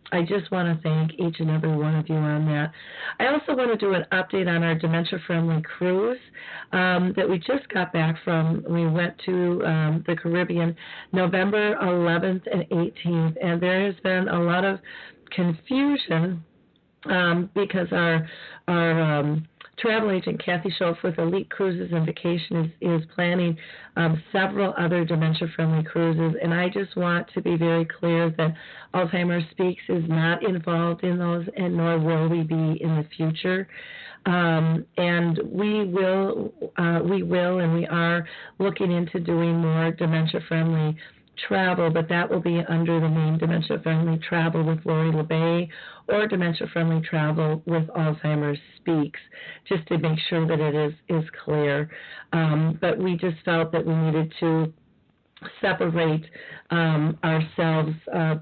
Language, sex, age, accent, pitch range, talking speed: English, female, 40-59, American, 160-180 Hz, 155 wpm